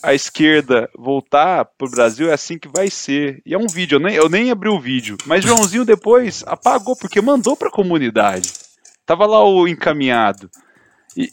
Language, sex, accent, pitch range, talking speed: Portuguese, male, Brazilian, 130-205 Hz, 175 wpm